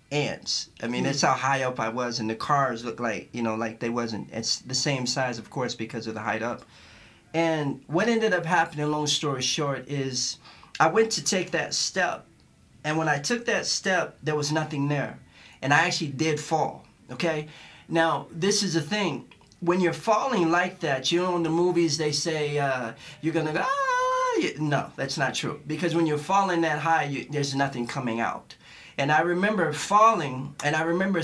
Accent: American